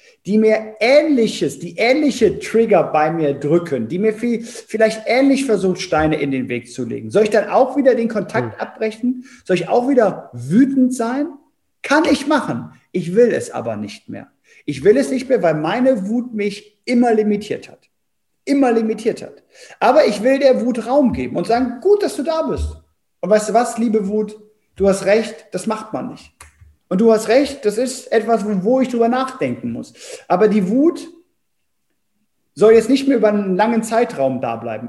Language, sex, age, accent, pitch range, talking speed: German, male, 50-69, German, 175-250 Hz, 190 wpm